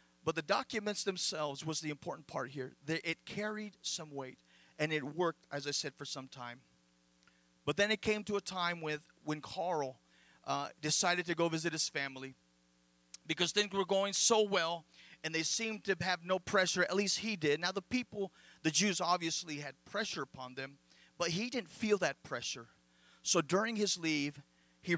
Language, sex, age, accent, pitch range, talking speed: English, male, 40-59, American, 135-185 Hz, 185 wpm